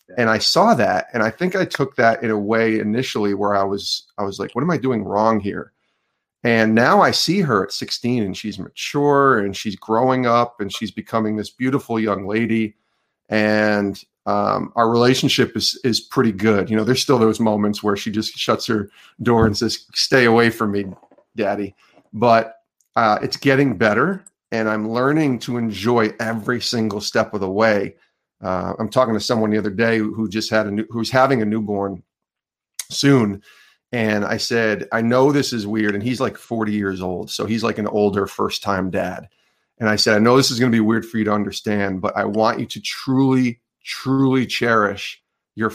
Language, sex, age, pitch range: English, male, 40-59, 105-125 Hz